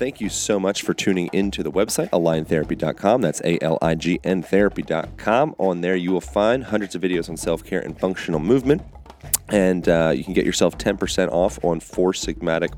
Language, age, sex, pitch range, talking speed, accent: English, 30-49, male, 80-95 Hz, 170 wpm, American